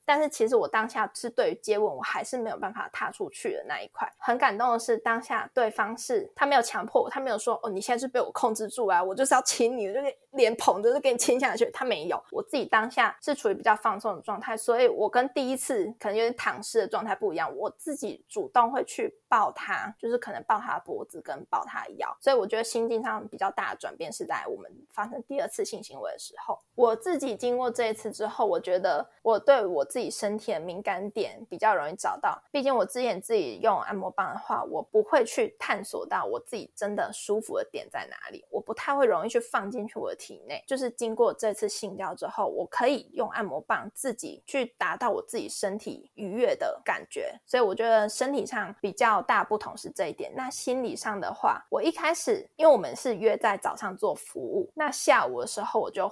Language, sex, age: Chinese, female, 20-39